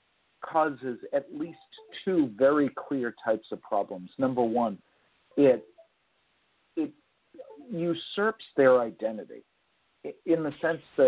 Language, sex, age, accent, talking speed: English, male, 50-69, American, 110 wpm